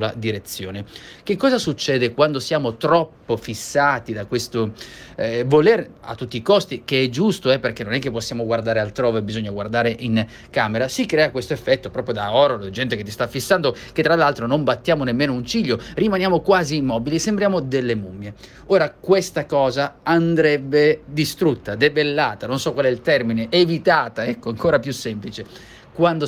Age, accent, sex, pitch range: 30-49, native, male, 115-155 Hz